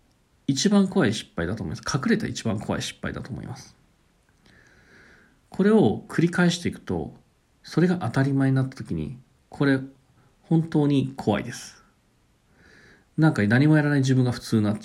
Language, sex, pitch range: Japanese, male, 115-160 Hz